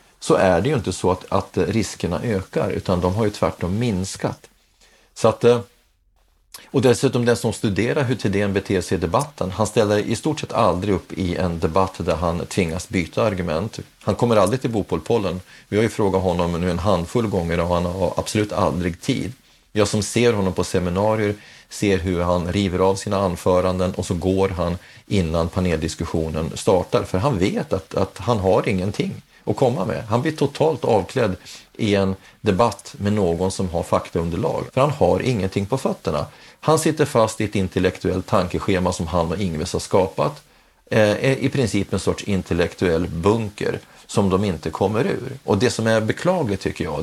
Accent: native